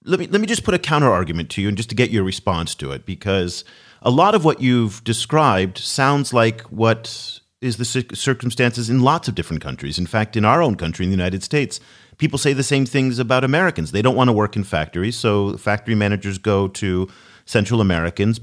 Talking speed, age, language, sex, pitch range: 220 wpm, 40-59, English, male, 100-135 Hz